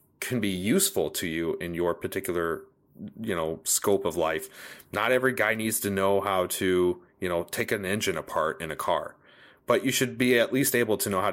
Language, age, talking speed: English, 30-49, 210 wpm